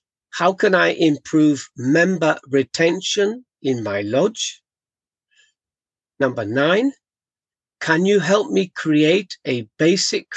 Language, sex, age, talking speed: English, male, 50-69, 105 wpm